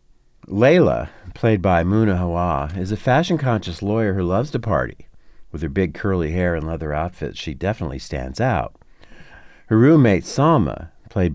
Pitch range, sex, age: 75-100 Hz, male, 50-69